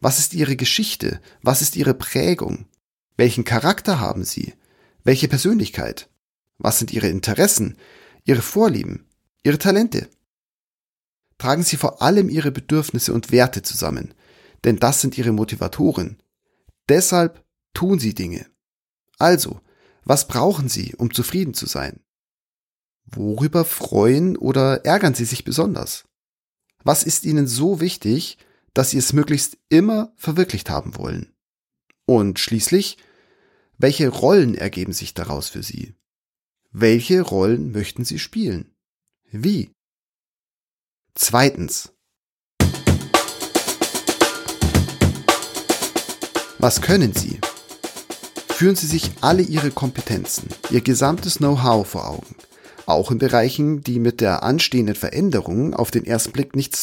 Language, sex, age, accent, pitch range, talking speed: German, male, 40-59, German, 115-165 Hz, 115 wpm